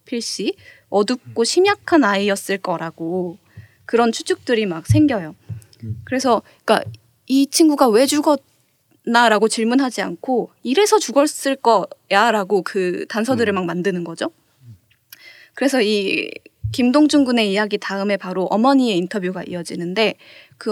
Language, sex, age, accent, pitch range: Korean, female, 20-39, native, 180-260 Hz